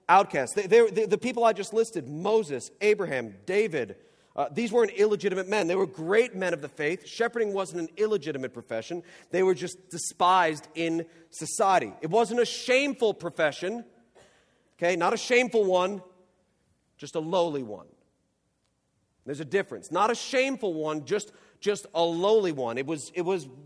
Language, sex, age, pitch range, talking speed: English, male, 40-59, 175-230 Hz, 155 wpm